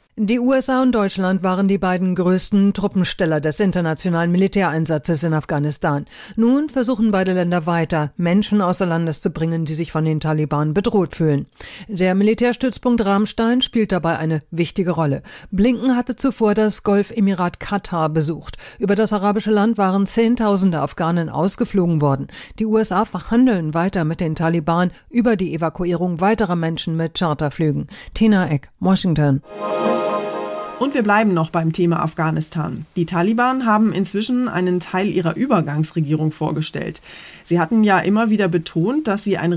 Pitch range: 165-215 Hz